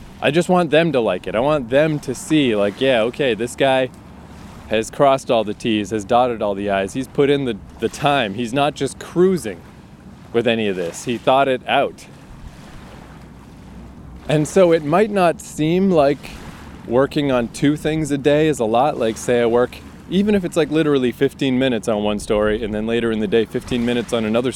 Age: 20-39